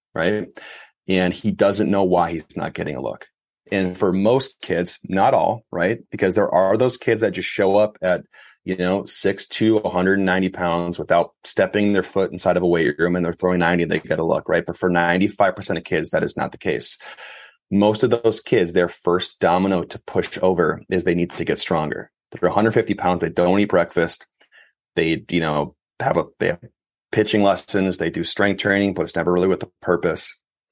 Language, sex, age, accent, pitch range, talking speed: English, male, 30-49, American, 90-105 Hz, 205 wpm